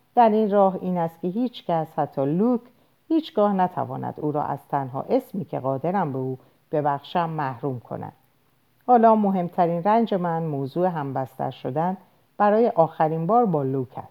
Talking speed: 155 wpm